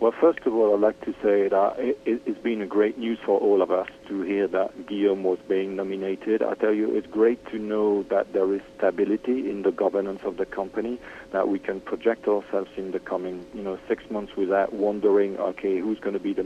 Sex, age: male, 50-69